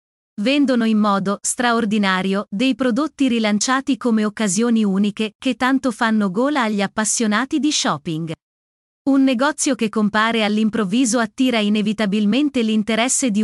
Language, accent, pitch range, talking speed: Italian, native, 210-255 Hz, 120 wpm